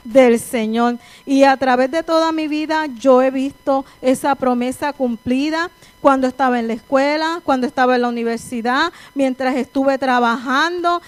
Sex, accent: female, American